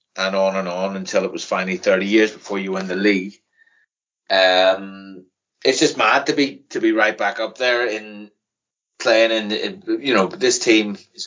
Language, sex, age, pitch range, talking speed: English, male, 30-49, 95-125 Hz, 190 wpm